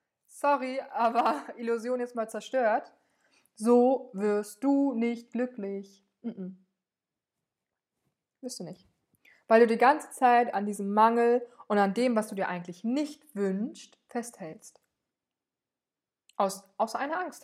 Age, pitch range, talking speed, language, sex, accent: 20-39, 215-260 Hz, 125 wpm, German, female, German